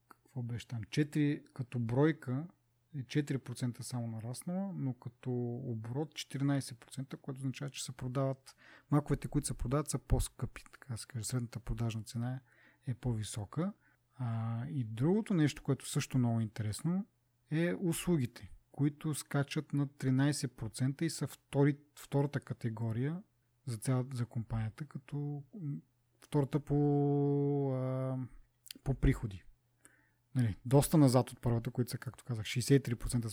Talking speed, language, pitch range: 120 wpm, Bulgarian, 120-145 Hz